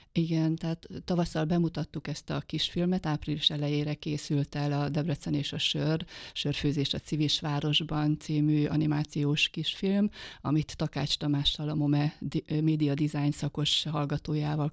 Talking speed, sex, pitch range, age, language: 130 wpm, female, 150-160 Hz, 30-49, Hungarian